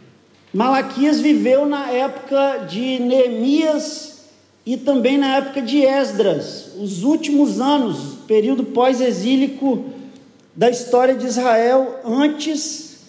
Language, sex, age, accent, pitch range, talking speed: Portuguese, male, 40-59, Brazilian, 245-280 Hz, 100 wpm